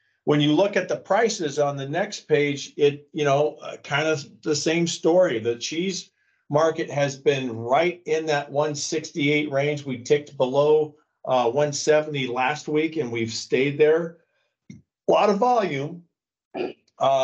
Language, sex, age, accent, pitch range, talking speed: English, male, 50-69, American, 130-155 Hz, 155 wpm